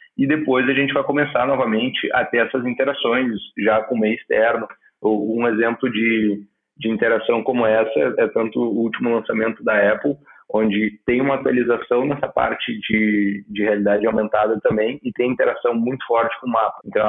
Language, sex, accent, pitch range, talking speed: Portuguese, male, Brazilian, 110-125 Hz, 180 wpm